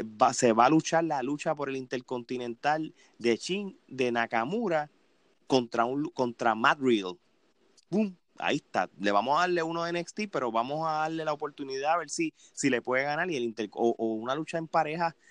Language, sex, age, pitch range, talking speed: Spanish, male, 30-49, 125-165 Hz, 200 wpm